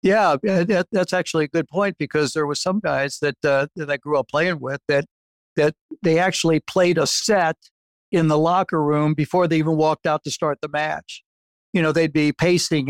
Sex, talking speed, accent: male, 210 wpm, American